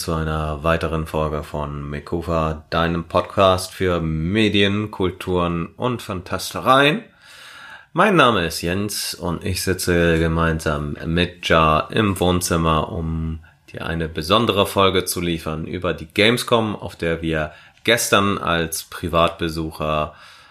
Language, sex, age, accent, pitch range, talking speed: German, male, 30-49, German, 80-100 Hz, 120 wpm